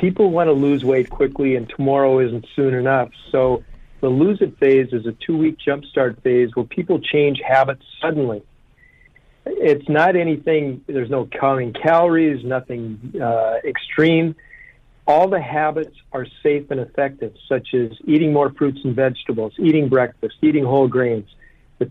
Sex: male